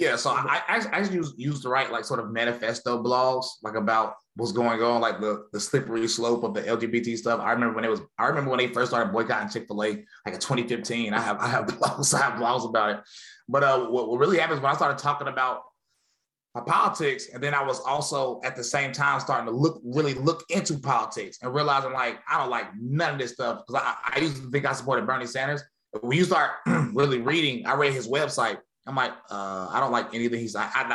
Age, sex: 20-39, male